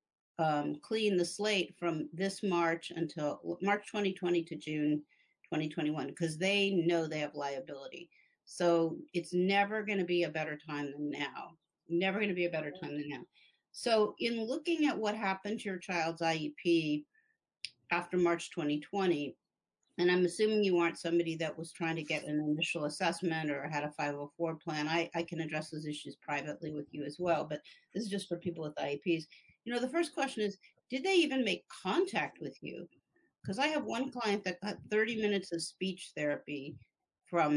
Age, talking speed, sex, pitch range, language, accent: 50-69, 185 wpm, female, 160-205 Hz, English, American